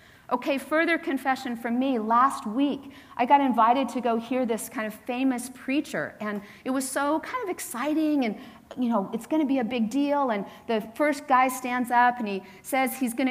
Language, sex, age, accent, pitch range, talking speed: English, female, 40-59, American, 210-260 Hz, 210 wpm